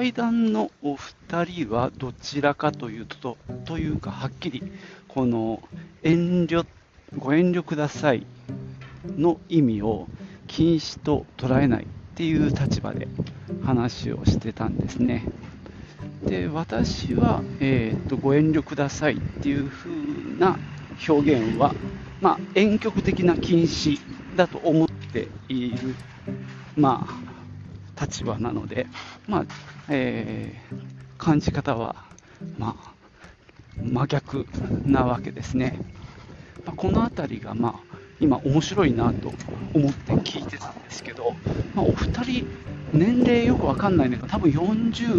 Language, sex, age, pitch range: Japanese, male, 40-59, 115-165 Hz